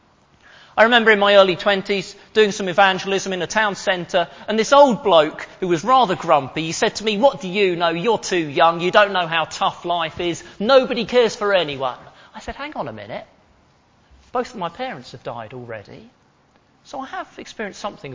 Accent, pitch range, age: British, 175-260 Hz, 40-59